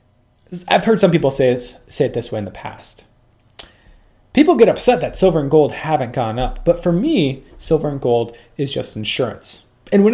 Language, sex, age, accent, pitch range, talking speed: English, male, 30-49, American, 115-150 Hz, 195 wpm